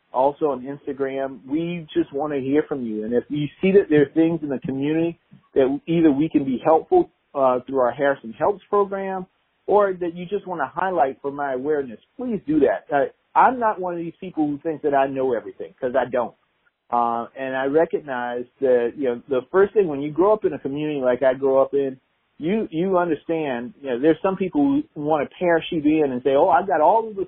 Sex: male